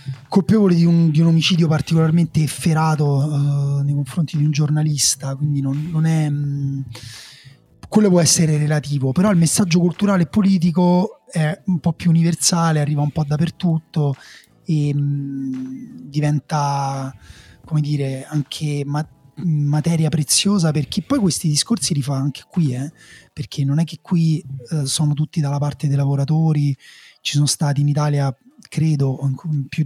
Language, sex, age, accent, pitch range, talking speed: Italian, male, 30-49, native, 135-160 Hz, 145 wpm